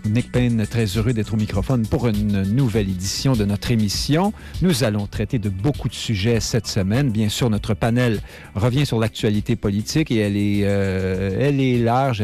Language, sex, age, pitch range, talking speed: French, male, 50-69, 100-125 Hz, 185 wpm